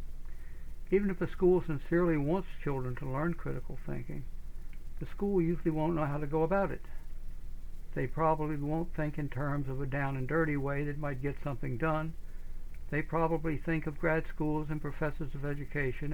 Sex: male